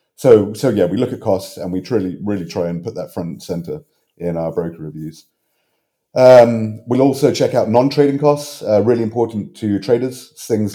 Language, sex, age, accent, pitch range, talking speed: English, male, 30-49, British, 85-115 Hz, 195 wpm